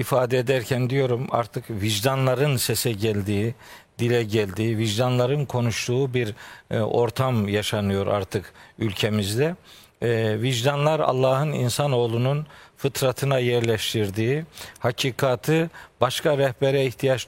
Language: Turkish